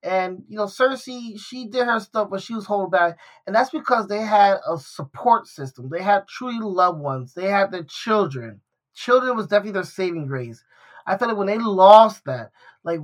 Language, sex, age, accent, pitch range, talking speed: English, male, 20-39, American, 175-215 Hz, 200 wpm